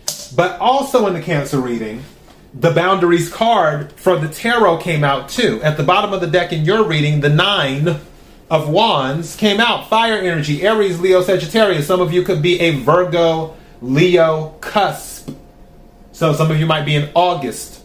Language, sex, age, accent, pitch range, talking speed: English, male, 30-49, American, 145-185 Hz, 175 wpm